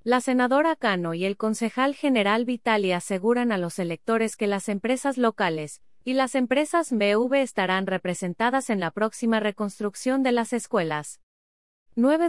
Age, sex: 30-49, female